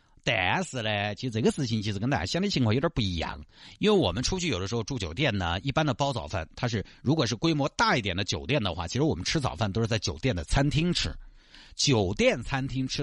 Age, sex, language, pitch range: 50-69, male, Chinese, 100-155 Hz